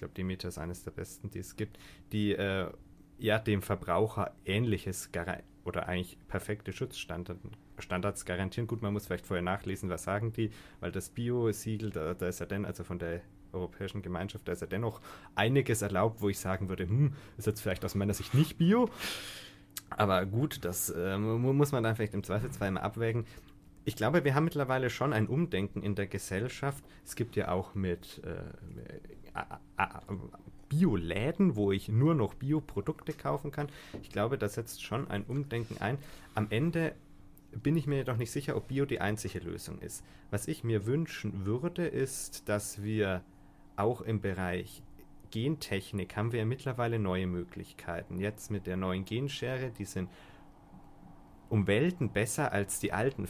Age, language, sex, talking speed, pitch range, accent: 30-49, German, male, 175 wpm, 95-125 Hz, German